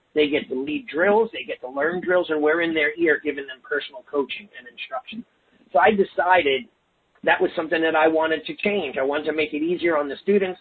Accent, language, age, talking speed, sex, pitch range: American, English, 40-59, 230 wpm, male, 150-195 Hz